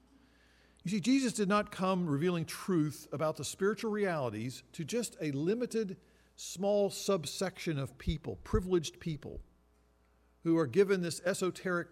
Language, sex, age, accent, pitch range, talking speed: English, male, 50-69, American, 140-205 Hz, 135 wpm